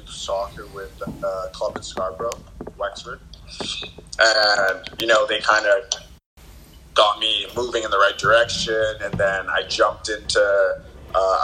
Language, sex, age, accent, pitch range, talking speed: English, male, 20-39, American, 95-130 Hz, 140 wpm